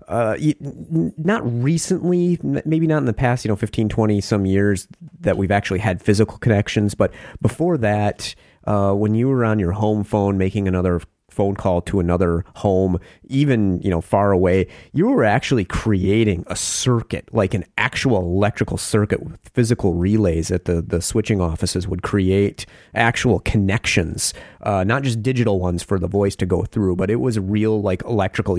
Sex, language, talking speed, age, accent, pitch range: male, English, 175 wpm, 30-49, American, 95-110 Hz